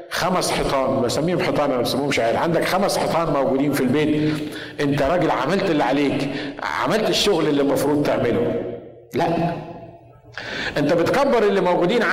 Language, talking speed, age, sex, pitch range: Arabic, 140 wpm, 50-69, male, 155-215 Hz